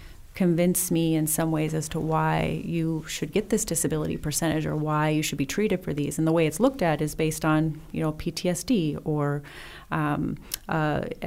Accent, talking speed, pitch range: American, 195 wpm, 155-170 Hz